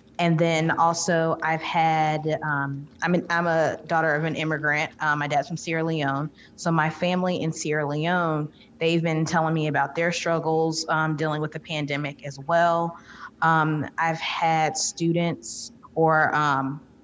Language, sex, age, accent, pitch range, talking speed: English, female, 20-39, American, 150-165 Hz, 160 wpm